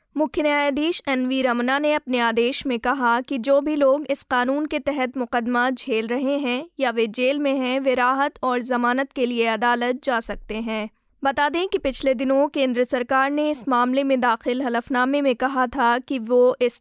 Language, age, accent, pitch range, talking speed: Hindi, 20-39, native, 245-280 Hz, 195 wpm